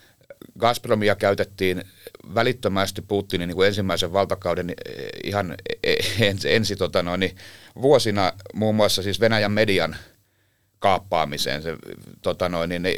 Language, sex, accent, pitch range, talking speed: Finnish, male, native, 90-100 Hz, 70 wpm